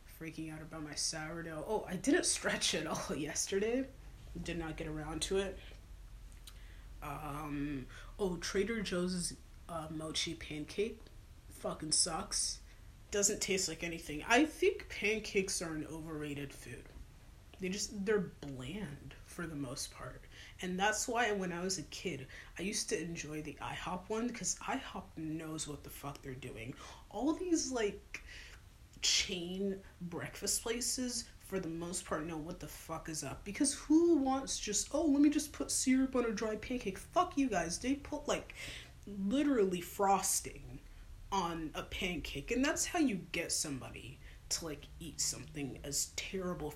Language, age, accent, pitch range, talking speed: English, 30-49, American, 145-205 Hz, 155 wpm